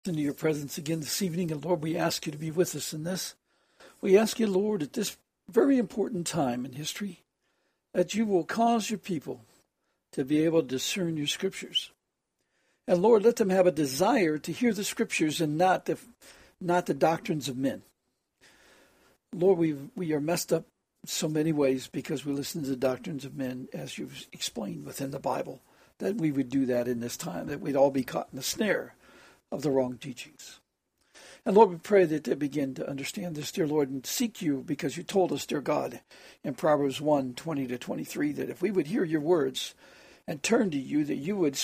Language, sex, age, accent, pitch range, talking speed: English, male, 60-79, American, 140-185 Hz, 210 wpm